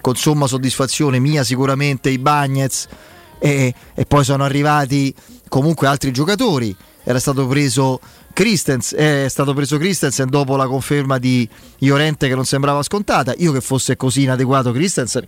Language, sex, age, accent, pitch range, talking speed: Italian, male, 30-49, native, 125-150 Hz, 150 wpm